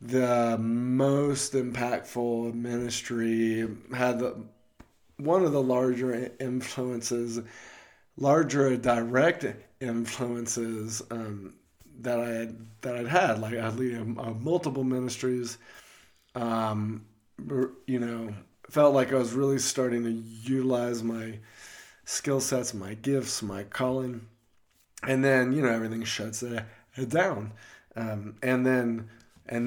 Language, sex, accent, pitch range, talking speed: English, male, American, 115-130 Hz, 115 wpm